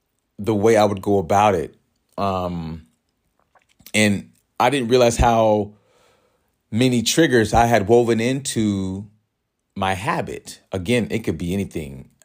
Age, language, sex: 40-59, English, male